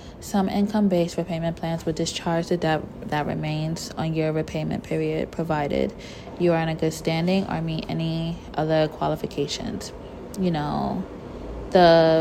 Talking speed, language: 145 wpm, English